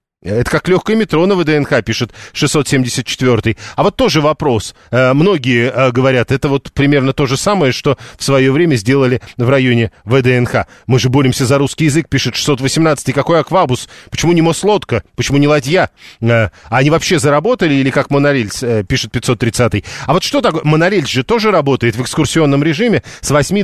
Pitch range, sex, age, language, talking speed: 125-160 Hz, male, 40-59, Russian, 165 wpm